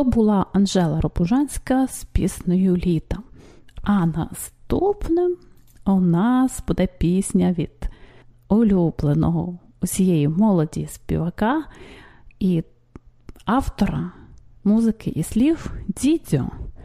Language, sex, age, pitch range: English, female, 30-49, 175-250 Hz